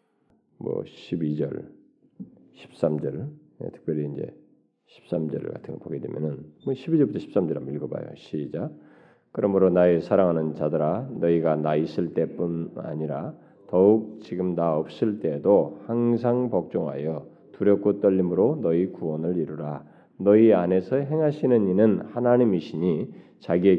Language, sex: Korean, male